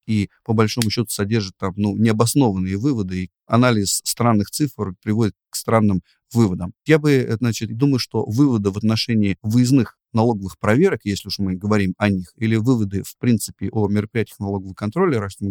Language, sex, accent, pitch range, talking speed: Russian, male, native, 100-120 Hz, 170 wpm